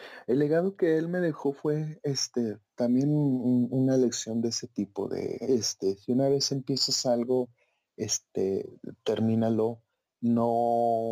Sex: male